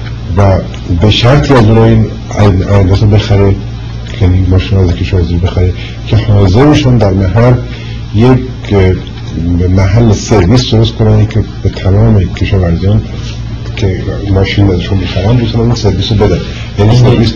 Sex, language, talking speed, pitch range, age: male, Persian, 120 wpm, 95-115 Hz, 50-69